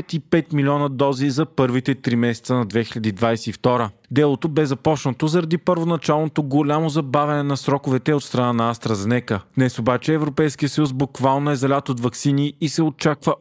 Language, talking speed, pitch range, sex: Bulgarian, 155 wpm, 125-150 Hz, male